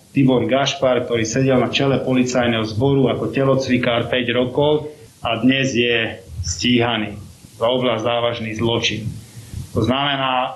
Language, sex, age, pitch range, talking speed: Slovak, male, 30-49, 120-140 Hz, 125 wpm